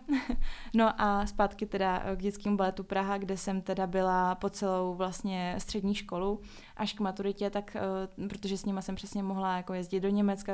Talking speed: 175 wpm